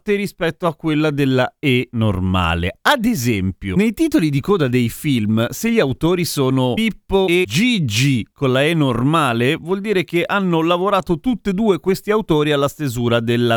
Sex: male